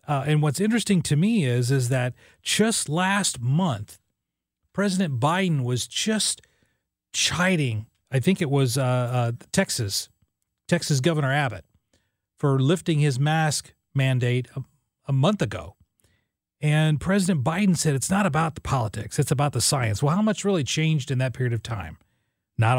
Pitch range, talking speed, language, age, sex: 120-165 Hz, 160 wpm, English, 40-59, male